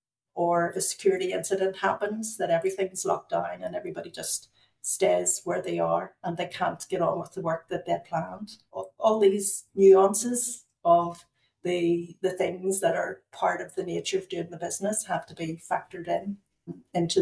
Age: 50-69